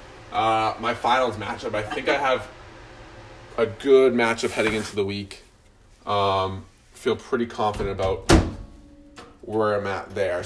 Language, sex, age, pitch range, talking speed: English, male, 20-39, 100-115 Hz, 140 wpm